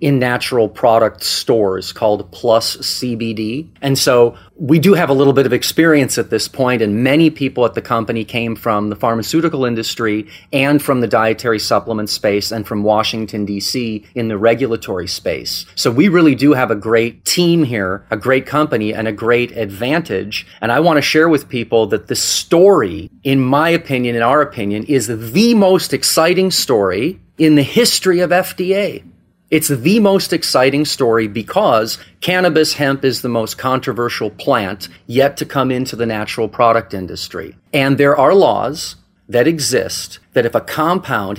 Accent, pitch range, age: American, 115-155 Hz, 30-49